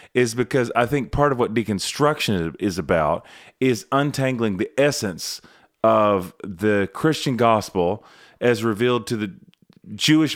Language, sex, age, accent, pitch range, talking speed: English, male, 30-49, American, 95-125 Hz, 135 wpm